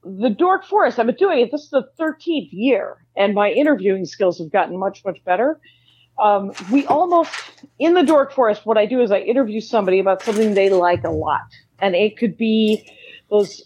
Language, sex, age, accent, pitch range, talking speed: English, female, 40-59, American, 195-260 Hz, 200 wpm